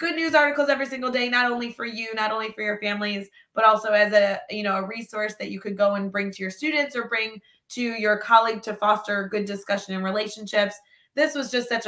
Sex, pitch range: female, 205-250 Hz